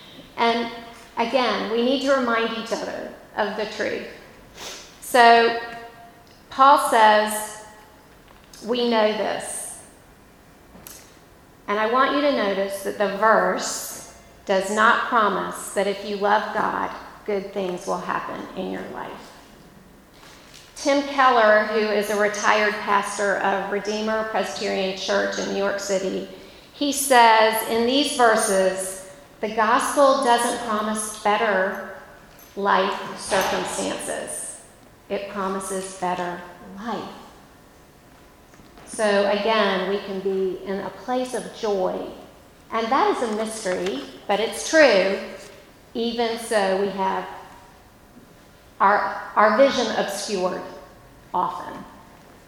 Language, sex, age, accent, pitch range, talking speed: English, female, 40-59, American, 195-235 Hz, 115 wpm